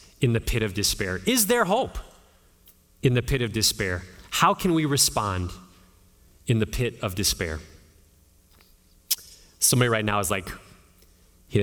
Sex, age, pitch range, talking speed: male, 30-49, 105-155 Hz, 145 wpm